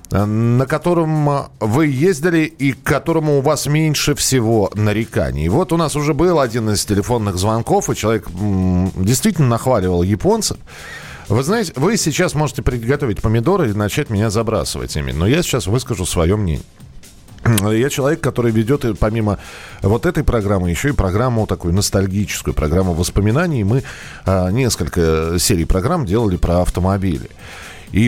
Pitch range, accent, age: 90-145 Hz, native, 40-59